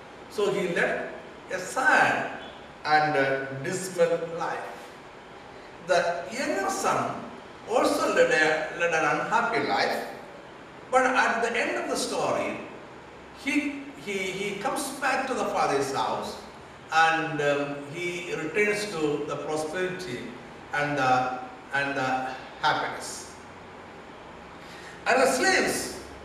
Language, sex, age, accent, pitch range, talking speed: Malayalam, male, 60-79, native, 140-220 Hz, 115 wpm